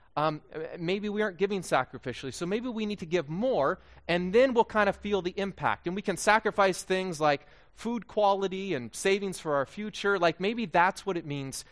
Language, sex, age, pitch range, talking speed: English, male, 30-49, 135-200 Hz, 205 wpm